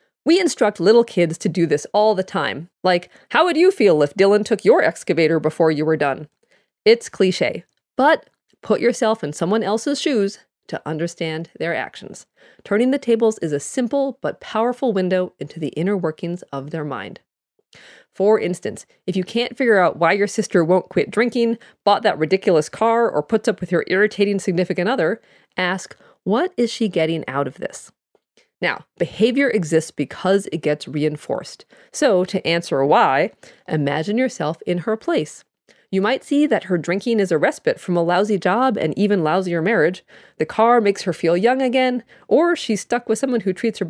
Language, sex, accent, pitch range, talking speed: English, female, American, 170-230 Hz, 185 wpm